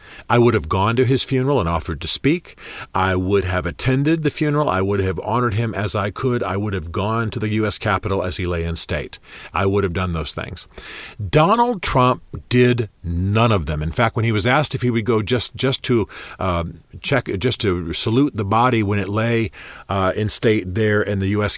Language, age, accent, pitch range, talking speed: English, 40-59, American, 95-125 Hz, 215 wpm